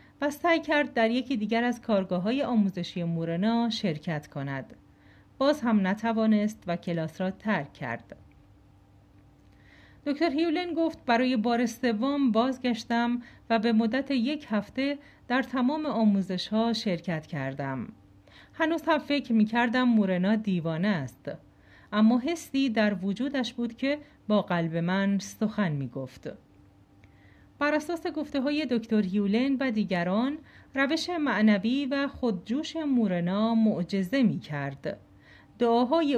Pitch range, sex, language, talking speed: 170-260 Hz, female, Persian, 115 wpm